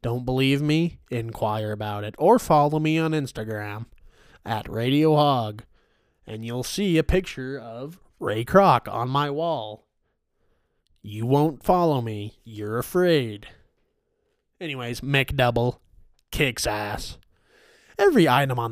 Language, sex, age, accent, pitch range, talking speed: English, male, 20-39, American, 115-140 Hz, 120 wpm